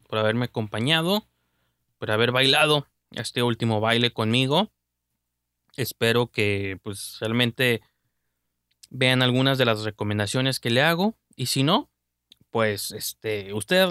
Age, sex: 20-39, male